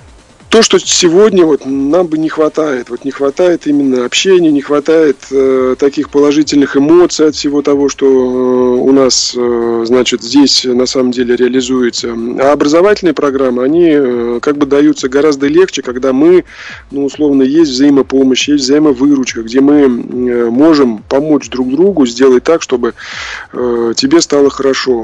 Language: Russian